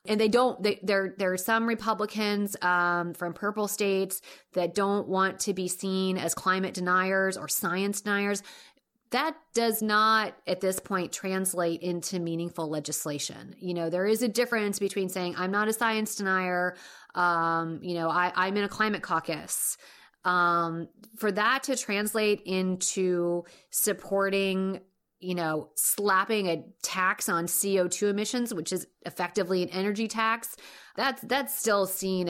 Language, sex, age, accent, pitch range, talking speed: English, female, 30-49, American, 185-220 Hz, 150 wpm